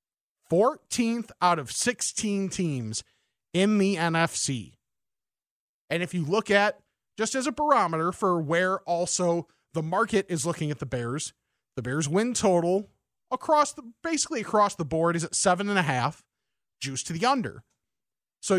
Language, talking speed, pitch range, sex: English, 155 wpm, 155-215 Hz, male